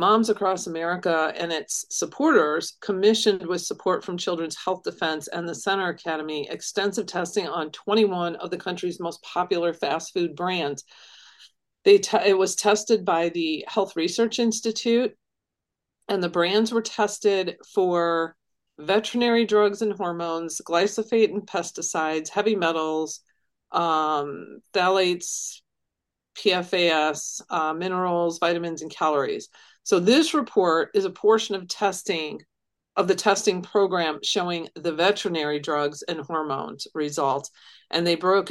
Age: 40-59